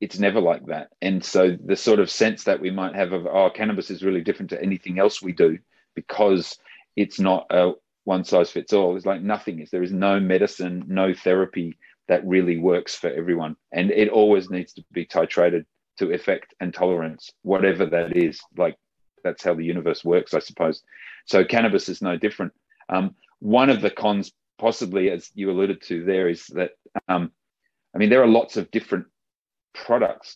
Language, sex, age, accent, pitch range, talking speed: English, male, 30-49, Australian, 90-100 Hz, 190 wpm